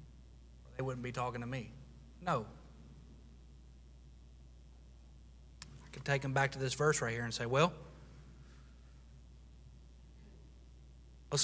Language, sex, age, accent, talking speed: English, male, 30-49, American, 110 wpm